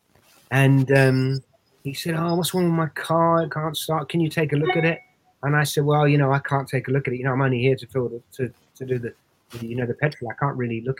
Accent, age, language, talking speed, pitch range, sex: British, 30-49, English, 290 wpm, 125-155 Hz, male